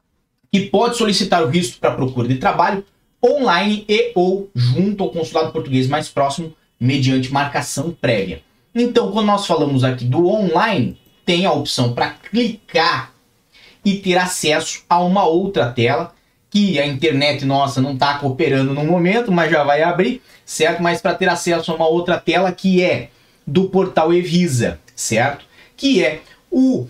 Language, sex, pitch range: Portuguese, male, 130-185 Hz